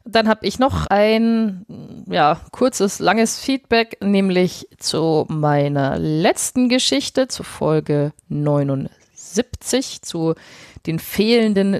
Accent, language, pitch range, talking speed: German, German, 160-205 Hz, 95 wpm